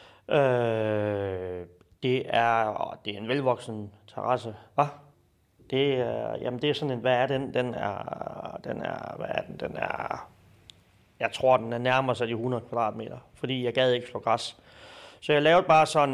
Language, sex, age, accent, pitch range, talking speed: Danish, male, 30-49, native, 115-150 Hz, 180 wpm